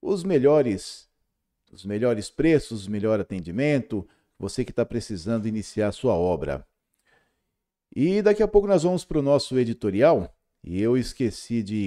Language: Portuguese